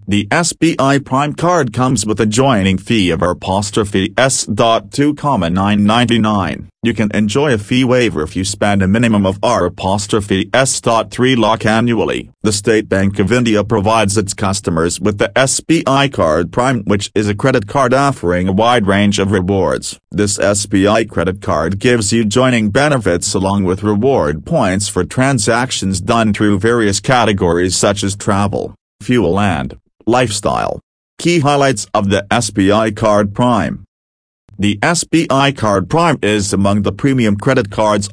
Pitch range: 100-120 Hz